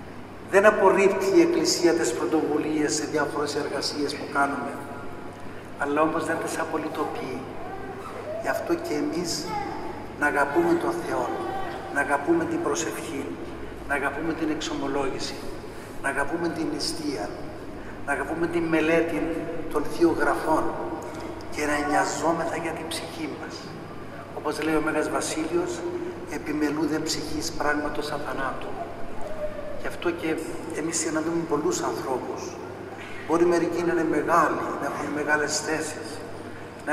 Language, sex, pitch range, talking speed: Greek, male, 150-170 Hz, 120 wpm